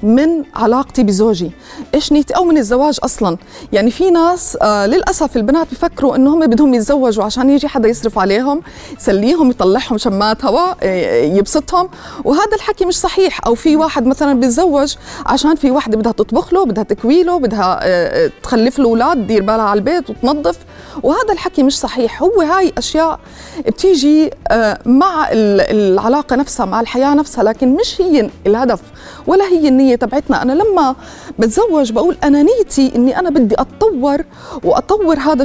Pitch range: 240-330 Hz